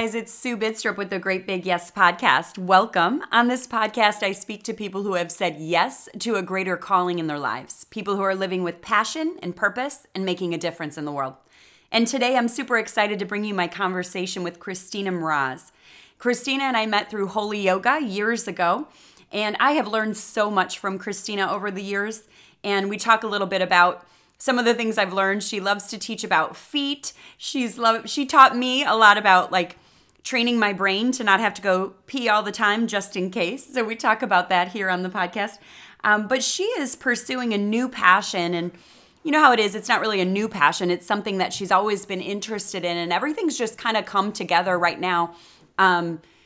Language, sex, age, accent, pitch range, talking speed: English, female, 30-49, American, 185-230 Hz, 215 wpm